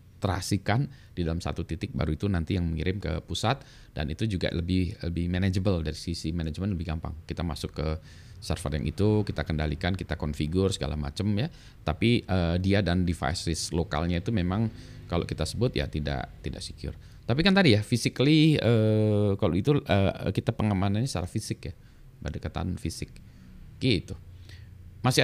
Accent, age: native, 20-39